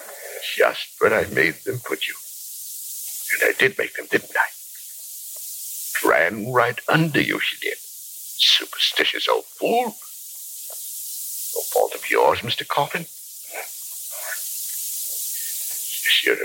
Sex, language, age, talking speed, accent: male, English, 60-79, 110 wpm, American